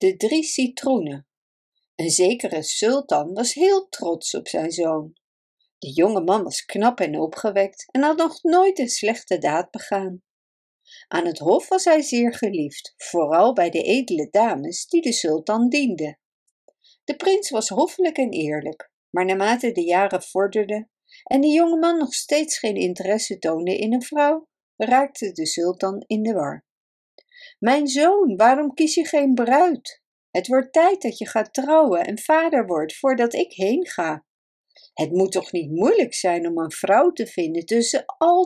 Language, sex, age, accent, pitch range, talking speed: Dutch, female, 50-69, Dutch, 185-295 Hz, 165 wpm